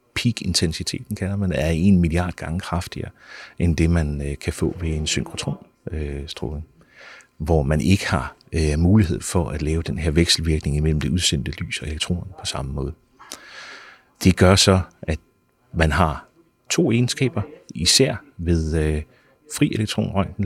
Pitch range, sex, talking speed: 80-110 Hz, male, 150 wpm